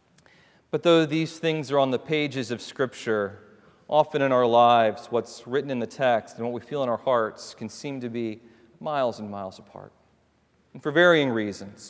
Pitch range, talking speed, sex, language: 120-145 Hz, 190 wpm, male, English